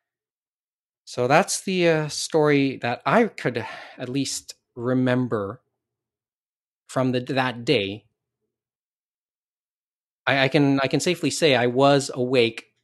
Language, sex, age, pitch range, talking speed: English, male, 30-49, 105-130 Hz, 115 wpm